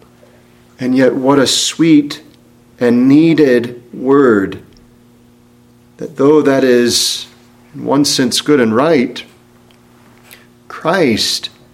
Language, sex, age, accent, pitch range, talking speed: English, male, 40-59, American, 105-145 Hz, 95 wpm